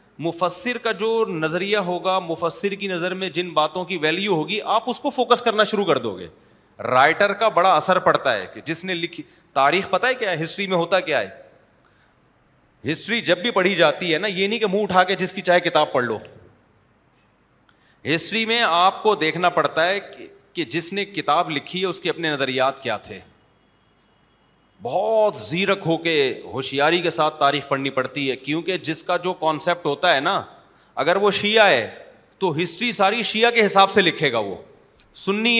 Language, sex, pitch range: Urdu, male, 165-215 Hz